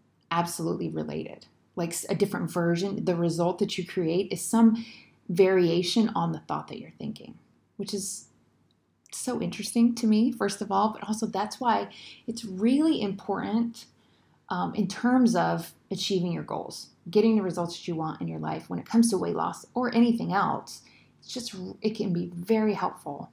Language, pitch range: English, 165-215 Hz